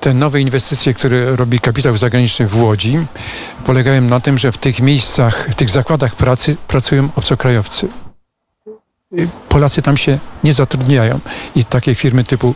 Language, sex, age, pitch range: Polish, male, 50-69, 125-140 Hz